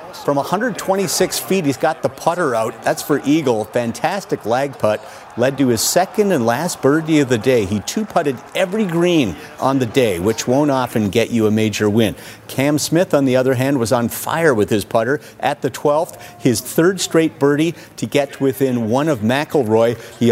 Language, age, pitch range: English, 50-69, 120-150 Hz